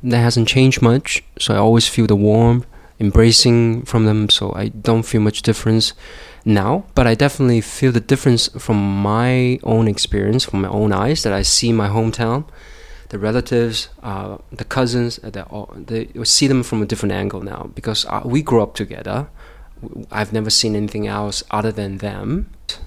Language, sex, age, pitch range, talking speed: English, male, 20-39, 100-120 Hz, 175 wpm